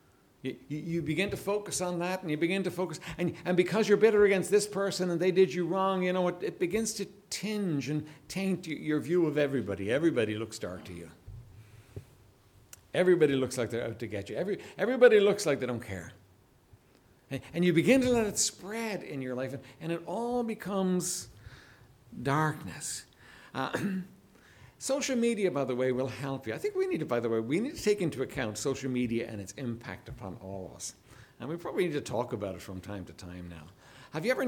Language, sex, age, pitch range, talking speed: English, male, 60-79, 125-205 Hz, 205 wpm